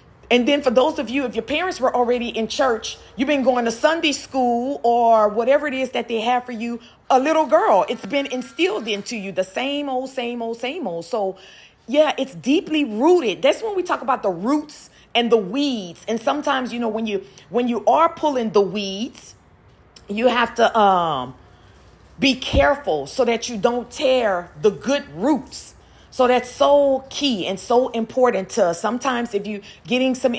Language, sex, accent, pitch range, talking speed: English, female, American, 210-275 Hz, 190 wpm